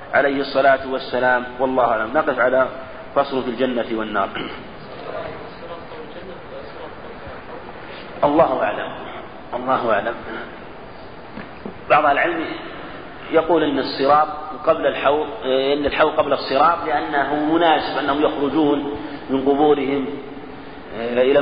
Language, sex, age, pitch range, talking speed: Arabic, male, 40-59, 145-185 Hz, 90 wpm